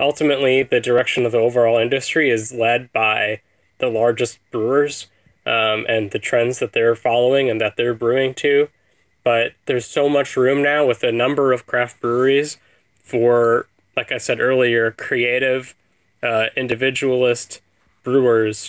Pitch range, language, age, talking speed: 110-125 Hz, English, 10-29, 150 wpm